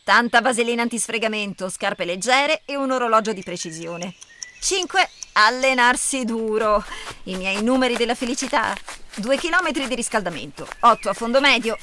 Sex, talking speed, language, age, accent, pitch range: female, 130 wpm, Italian, 30-49, native, 195-275 Hz